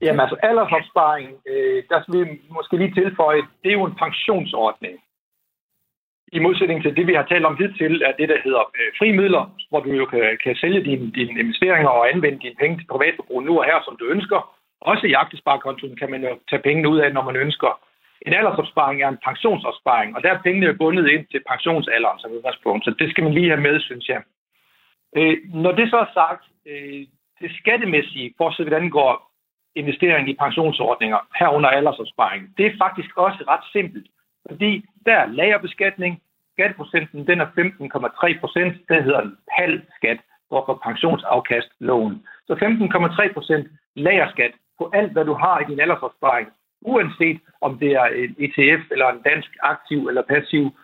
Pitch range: 140-185 Hz